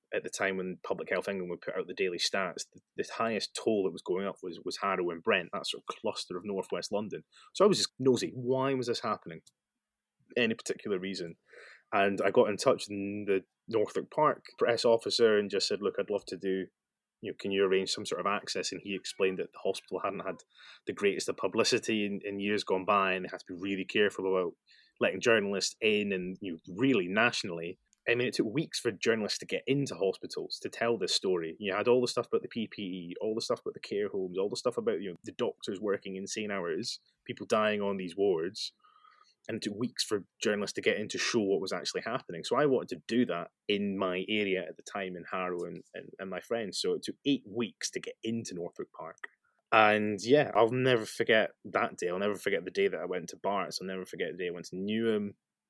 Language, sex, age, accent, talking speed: English, male, 20-39, British, 240 wpm